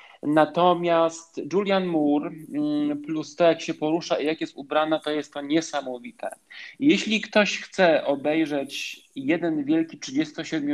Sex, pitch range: male, 145-195 Hz